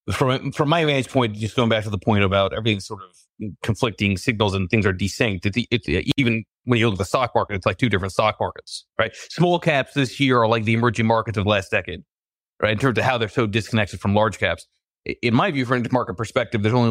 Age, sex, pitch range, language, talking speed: 30-49, male, 100-125 Hz, English, 255 wpm